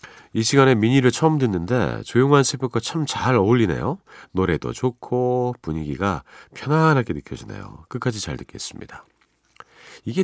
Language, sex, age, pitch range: Korean, male, 40-59, 100-145 Hz